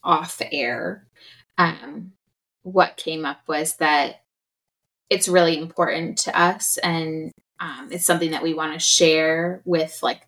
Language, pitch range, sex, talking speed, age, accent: English, 160-190 Hz, female, 140 wpm, 20-39, American